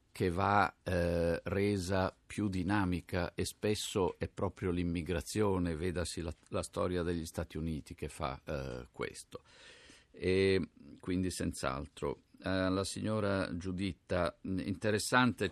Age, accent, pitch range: 50-69, native, 85-100 Hz